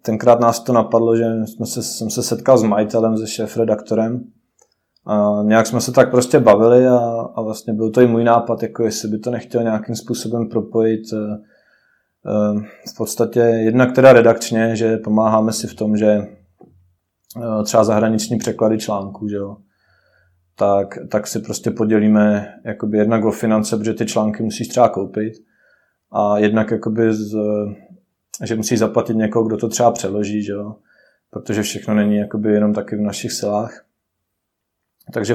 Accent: native